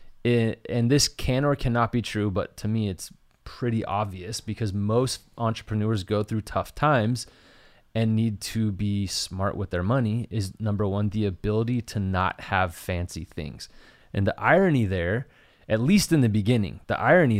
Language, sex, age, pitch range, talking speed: English, male, 30-49, 105-120 Hz, 170 wpm